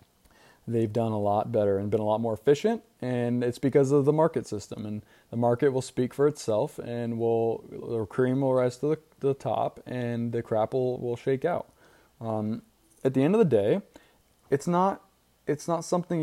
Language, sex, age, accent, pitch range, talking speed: English, male, 20-39, American, 115-145 Hz, 200 wpm